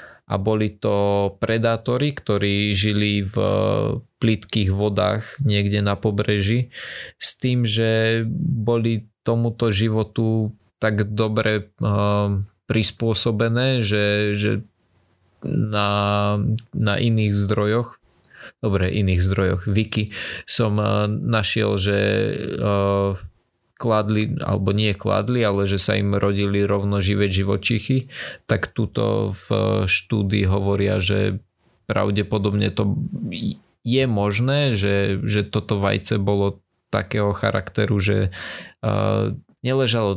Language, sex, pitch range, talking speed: Slovak, male, 100-115 Hz, 105 wpm